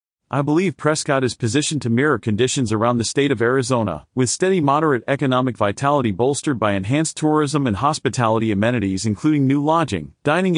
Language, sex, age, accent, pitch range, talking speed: English, male, 40-59, American, 115-150 Hz, 165 wpm